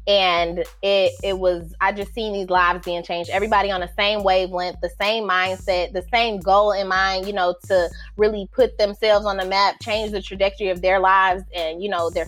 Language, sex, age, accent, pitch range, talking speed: English, female, 20-39, American, 190-250 Hz, 210 wpm